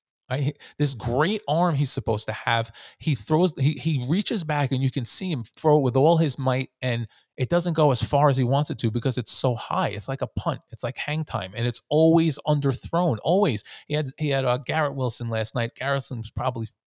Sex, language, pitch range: male, English, 115-145 Hz